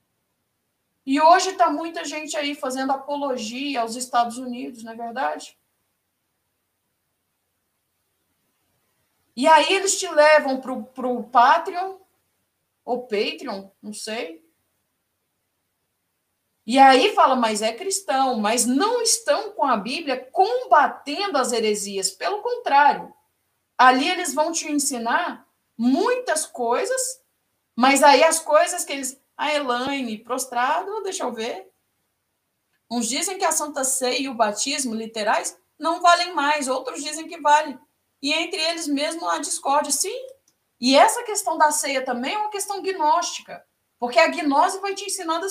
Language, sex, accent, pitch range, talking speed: Portuguese, female, Brazilian, 245-330 Hz, 135 wpm